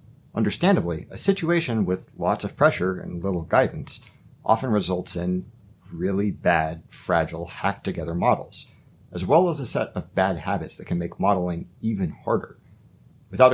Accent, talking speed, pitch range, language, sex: American, 145 wpm, 90-125 Hz, English, male